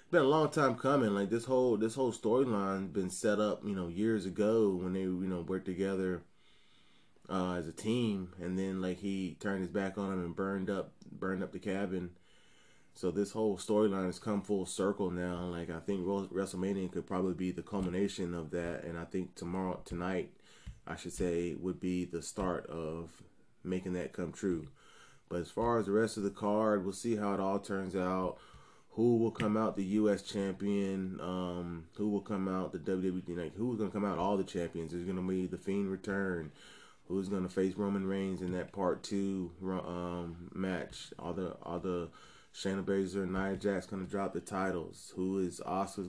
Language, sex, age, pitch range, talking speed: English, male, 20-39, 90-100 Hz, 205 wpm